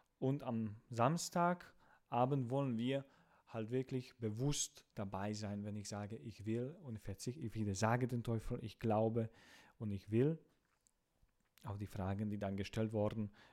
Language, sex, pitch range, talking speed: English, male, 105-130 Hz, 155 wpm